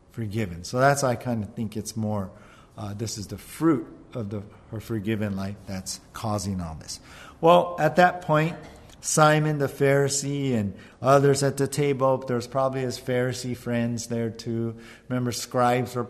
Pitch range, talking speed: 110-135 Hz, 170 wpm